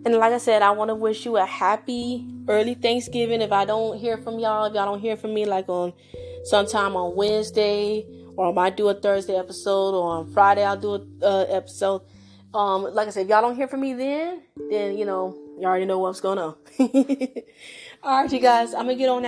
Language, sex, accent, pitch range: English, female, American, 175-215 Hz